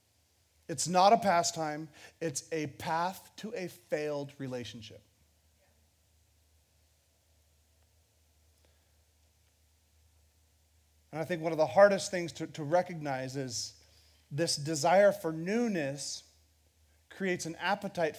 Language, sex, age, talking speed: English, male, 40-59, 100 wpm